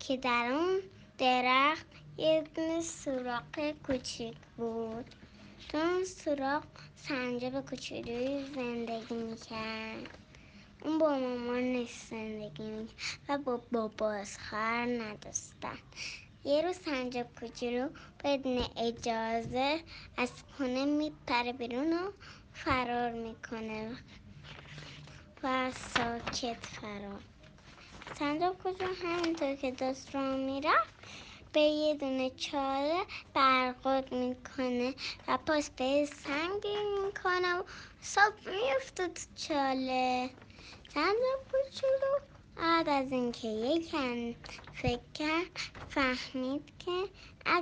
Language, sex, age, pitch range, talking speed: Persian, male, 10-29, 245-310 Hz, 95 wpm